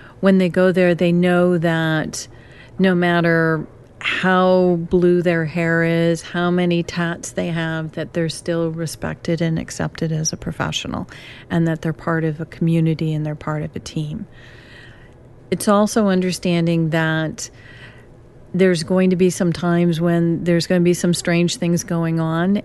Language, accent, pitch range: English, American, 160-175 Hz